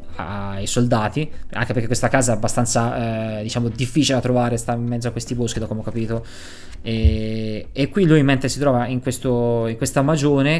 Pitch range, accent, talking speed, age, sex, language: 110-125 Hz, native, 200 wpm, 20-39, male, Italian